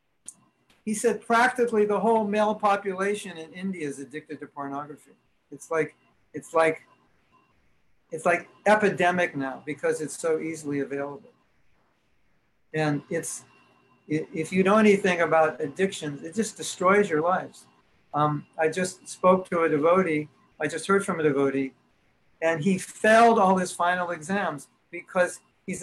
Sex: male